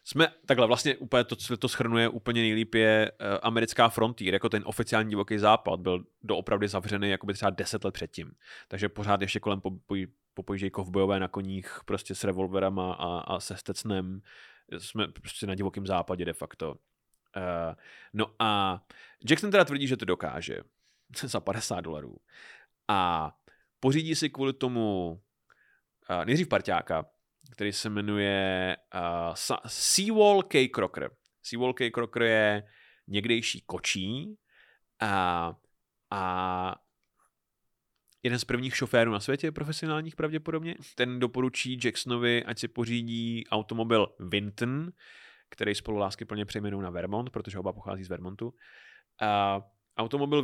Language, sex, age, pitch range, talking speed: Czech, male, 20-39, 95-120 Hz, 135 wpm